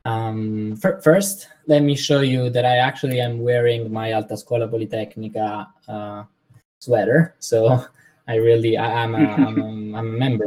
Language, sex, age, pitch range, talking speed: English, male, 20-39, 105-125 Hz, 170 wpm